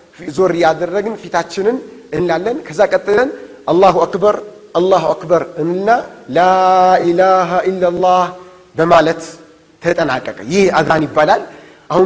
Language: Amharic